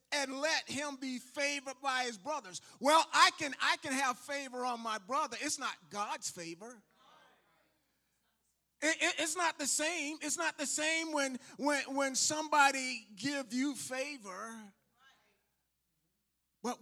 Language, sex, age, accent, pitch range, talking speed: English, male, 30-49, American, 215-285 Hz, 145 wpm